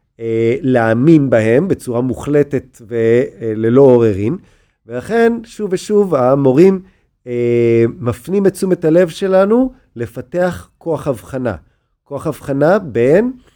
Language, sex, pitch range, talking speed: Hebrew, male, 115-160 Hz, 95 wpm